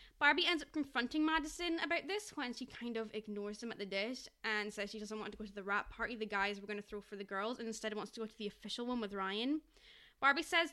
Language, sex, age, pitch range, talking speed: English, female, 10-29, 230-325 Hz, 275 wpm